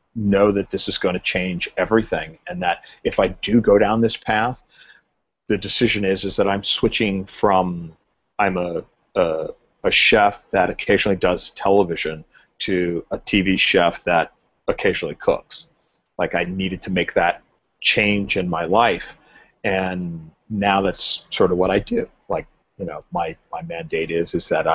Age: 40-59